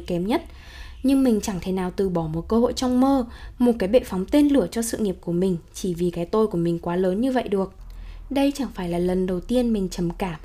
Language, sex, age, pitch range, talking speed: Vietnamese, female, 10-29, 185-260 Hz, 265 wpm